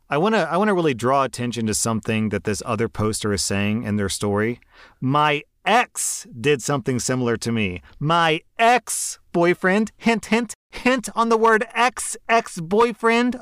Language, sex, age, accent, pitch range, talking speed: English, male, 30-49, American, 105-165 Hz, 155 wpm